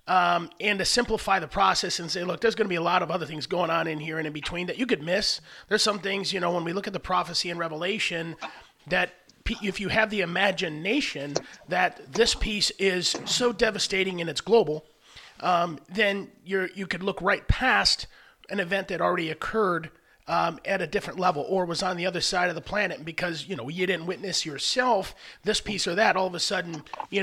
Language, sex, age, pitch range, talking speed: English, male, 30-49, 170-205 Hz, 220 wpm